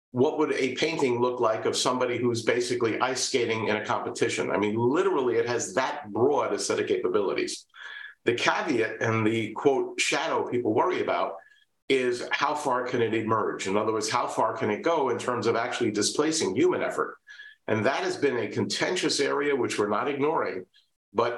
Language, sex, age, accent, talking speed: English, male, 50-69, American, 190 wpm